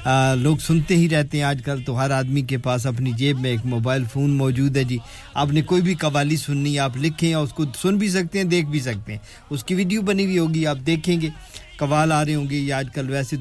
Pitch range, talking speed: 130-155 Hz, 225 wpm